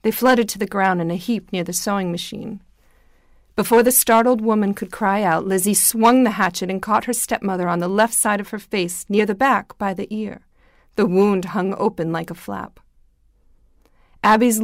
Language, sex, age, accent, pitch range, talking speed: English, female, 40-59, American, 180-215 Hz, 195 wpm